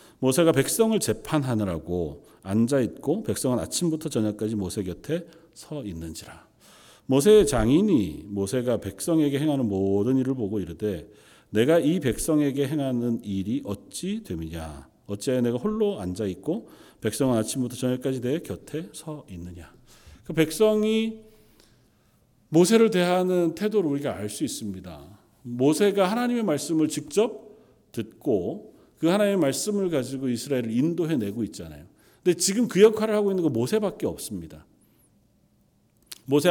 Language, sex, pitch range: Korean, male, 110-180 Hz